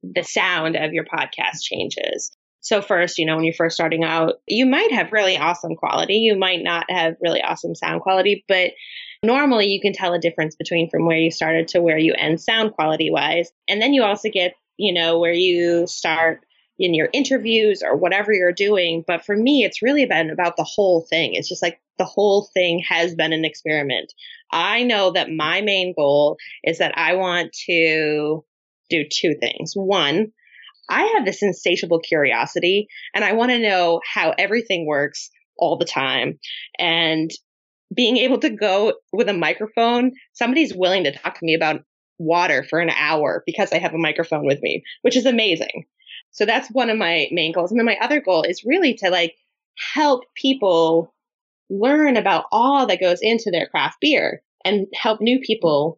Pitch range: 165-225 Hz